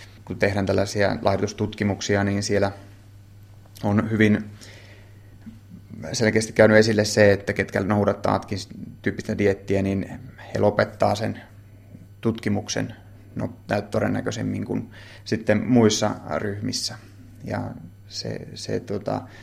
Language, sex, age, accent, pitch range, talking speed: Finnish, male, 30-49, native, 100-115 Hz, 100 wpm